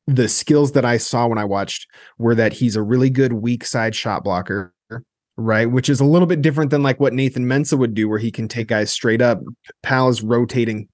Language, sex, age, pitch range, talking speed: English, male, 20-39, 110-135 Hz, 230 wpm